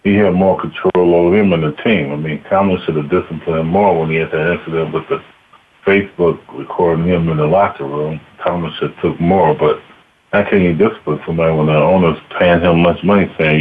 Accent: American